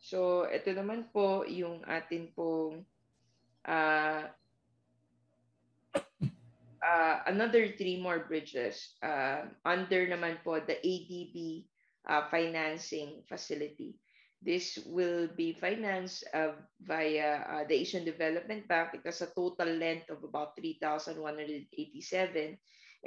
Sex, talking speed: female, 105 wpm